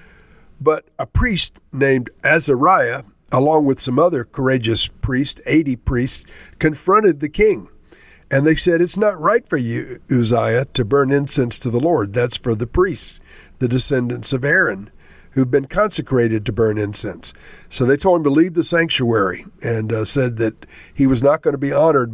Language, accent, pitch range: English, American, 120-155 Hz